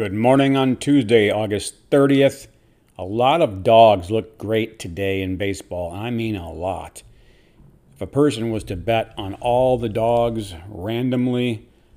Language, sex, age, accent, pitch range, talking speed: English, male, 50-69, American, 95-130 Hz, 150 wpm